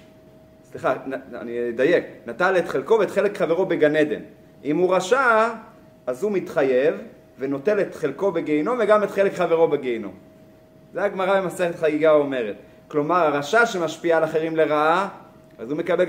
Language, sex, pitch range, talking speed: Hebrew, male, 155-200 Hz, 145 wpm